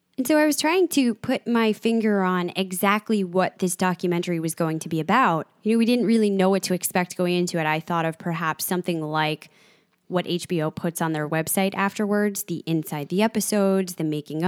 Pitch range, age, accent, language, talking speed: 170-210 Hz, 20-39, American, English, 205 wpm